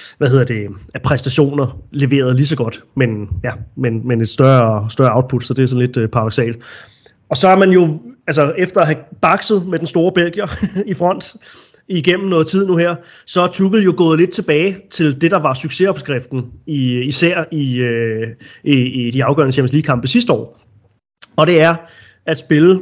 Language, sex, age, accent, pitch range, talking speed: Danish, male, 30-49, native, 125-165 Hz, 195 wpm